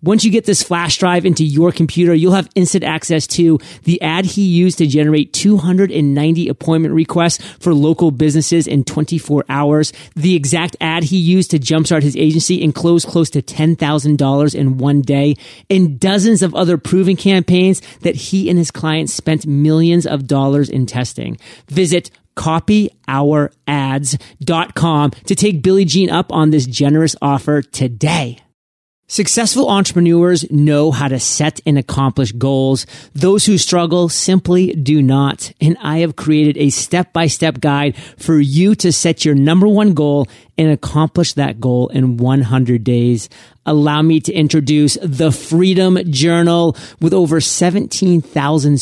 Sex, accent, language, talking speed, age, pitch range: male, American, English, 150 wpm, 30-49, 145-175 Hz